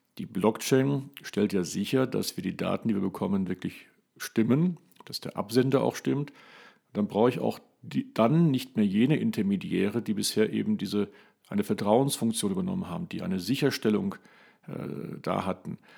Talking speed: 160 wpm